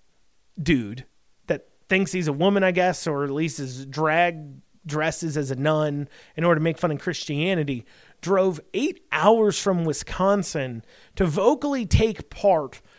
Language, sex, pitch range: English, male, 150-200 Hz